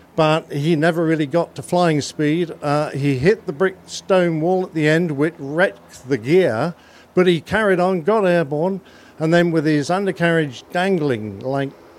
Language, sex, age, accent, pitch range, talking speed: English, male, 50-69, British, 140-175 Hz, 175 wpm